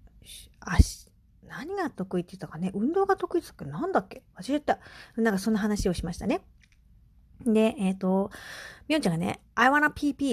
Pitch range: 185-285 Hz